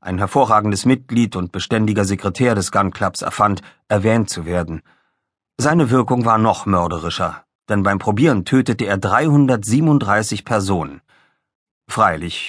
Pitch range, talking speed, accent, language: 100-140 Hz, 125 wpm, German, German